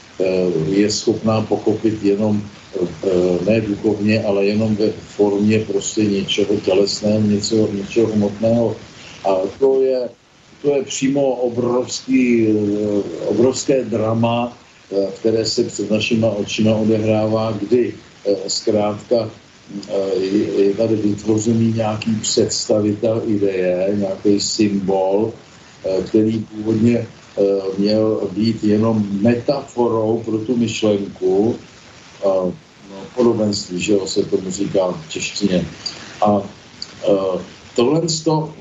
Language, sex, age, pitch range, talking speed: Slovak, male, 50-69, 105-125 Hz, 95 wpm